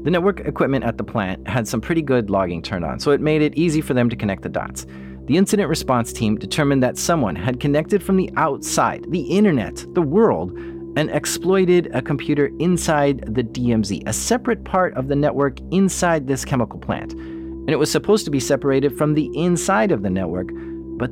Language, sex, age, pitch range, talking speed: English, male, 30-49, 110-160 Hz, 200 wpm